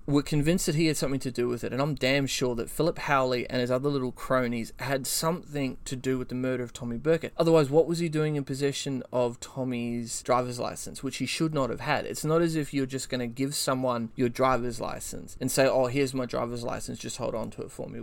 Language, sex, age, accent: English, male, 20-39, Australian